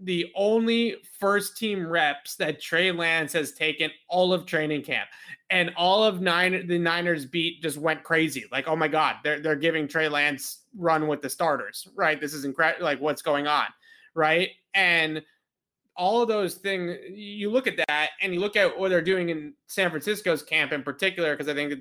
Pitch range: 150-185 Hz